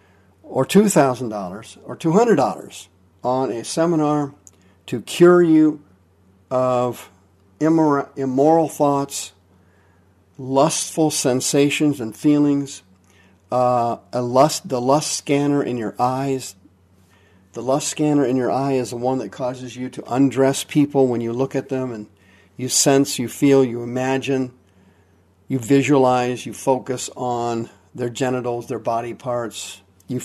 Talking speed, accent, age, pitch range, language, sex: 125 wpm, American, 50-69, 100-135 Hz, English, male